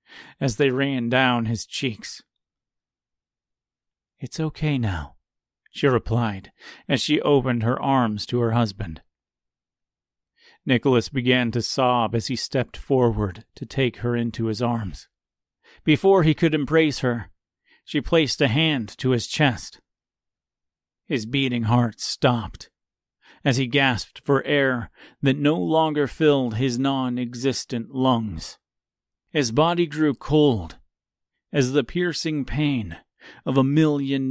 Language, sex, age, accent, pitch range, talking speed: English, male, 40-59, American, 115-140 Hz, 125 wpm